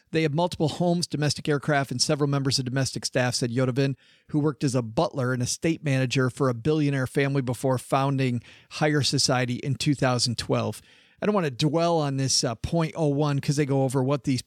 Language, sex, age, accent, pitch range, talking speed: English, male, 40-59, American, 130-170 Hz, 195 wpm